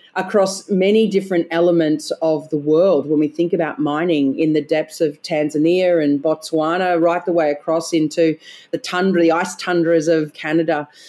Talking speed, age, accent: 170 wpm, 40-59, Australian